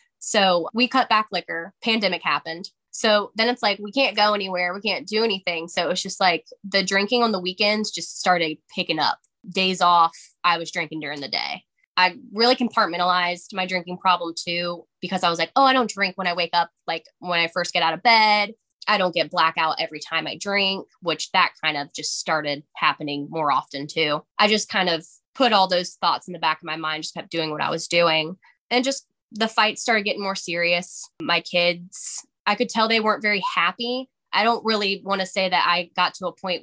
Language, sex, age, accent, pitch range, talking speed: English, female, 10-29, American, 165-210 Hz, 225 wpm